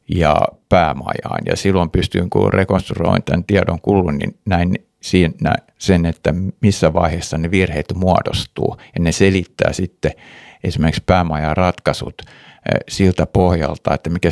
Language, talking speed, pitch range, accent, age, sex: Finnish, 125 wpm, 80-90 Hz, native, 60-79, male